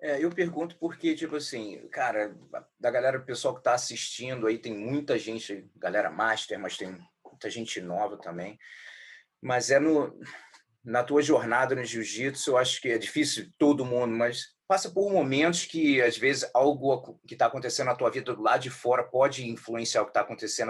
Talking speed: 190 wpm